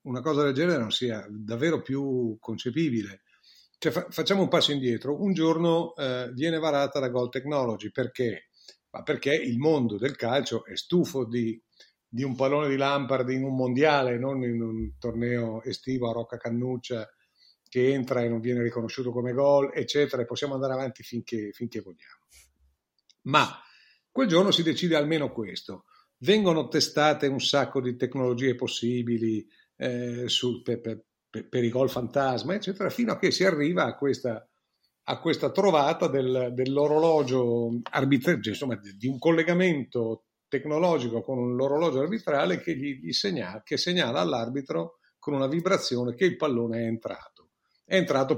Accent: native